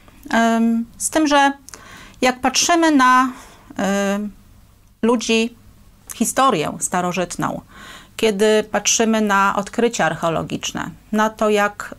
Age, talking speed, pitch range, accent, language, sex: 40-59, 85 wpm, 195-235 Hz, native, Polish, female